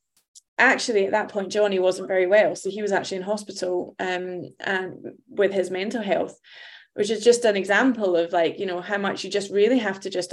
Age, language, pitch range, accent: 20-39, English, 180-210 Hz, British